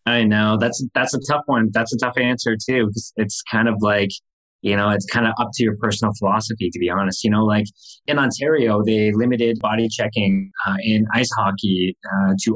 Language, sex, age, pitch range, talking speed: English, male, 20-39, 100-115 Hz, 215 wpm